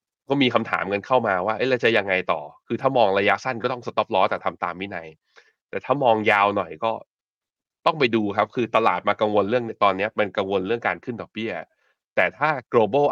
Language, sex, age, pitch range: Thai, male, 20-39, 95-120 Hz